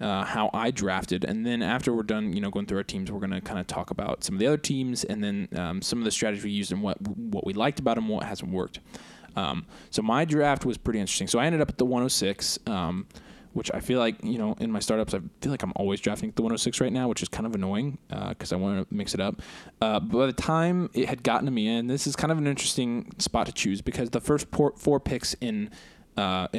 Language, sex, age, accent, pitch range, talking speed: English, male, 20-39, American, 115-185 Hz, 280 wpm